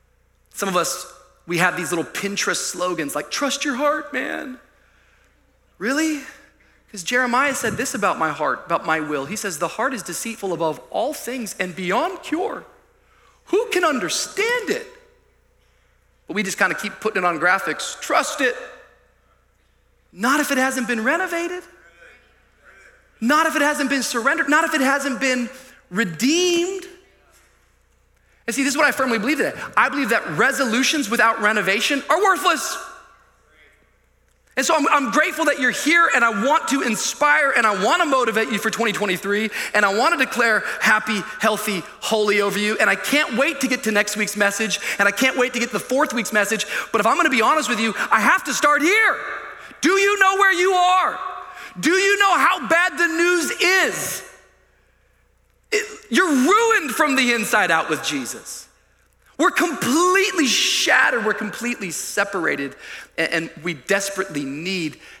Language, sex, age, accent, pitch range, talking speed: English, male, 30-49, American, 210-325 Hz, 170 wpm